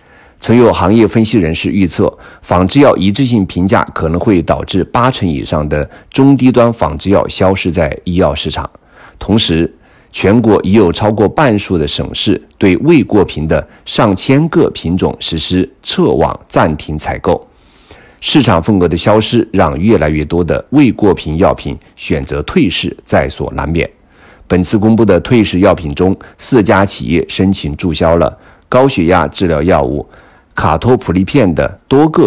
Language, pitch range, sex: Chinese, 80-105 Hz, male